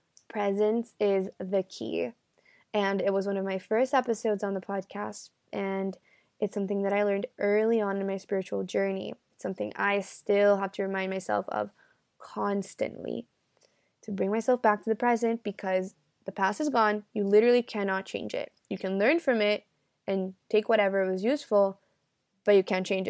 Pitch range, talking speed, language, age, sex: 195-235 Hz, 175 wpm, English, 20-39, female